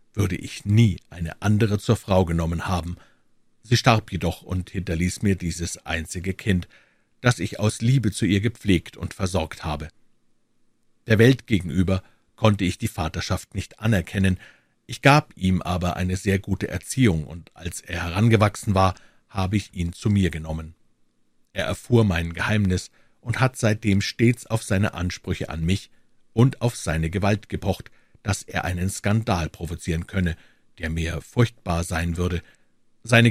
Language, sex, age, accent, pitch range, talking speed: German, male, 50-69, German, 90-110 Hz, 155 wpm